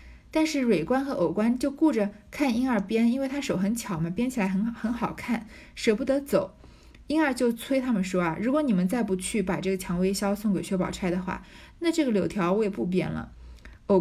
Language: Chinese